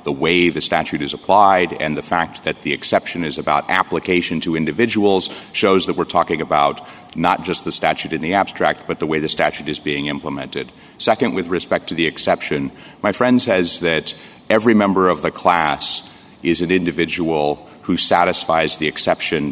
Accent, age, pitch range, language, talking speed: American, 40-59, 80-95 Hz, English, 180 wpm